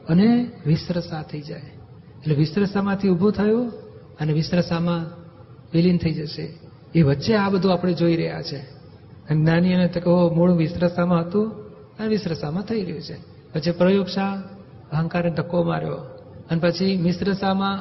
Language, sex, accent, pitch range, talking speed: Gujarati, male, native, 155-185 Hz, 140 wpm